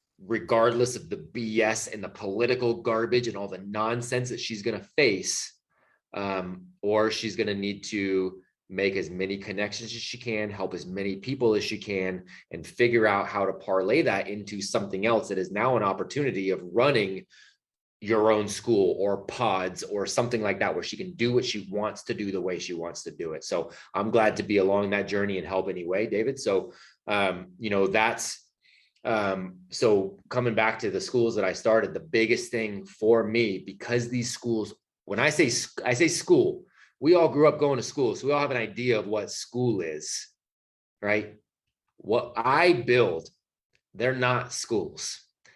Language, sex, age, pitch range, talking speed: English, male, 30-49, 100-130 Hz, 190 wpm